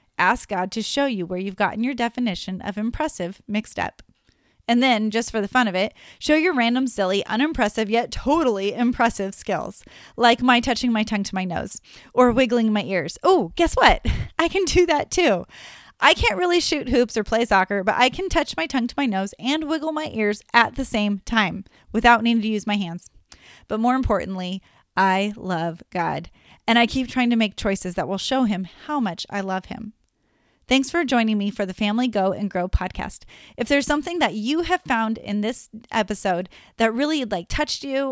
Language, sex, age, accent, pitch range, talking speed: English, female, 30-49, American, 195-255 Hz, 205 wpm